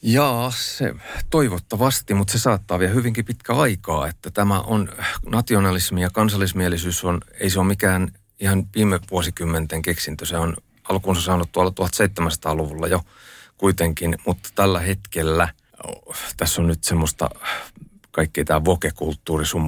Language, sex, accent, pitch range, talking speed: Finnish, male, native, 80-95 Hz, 135 wpm